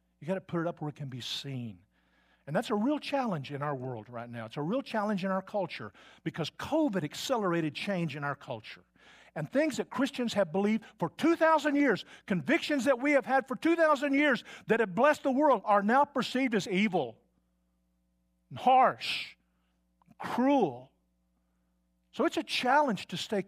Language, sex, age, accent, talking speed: English, male, 50-69, American, 185 wpm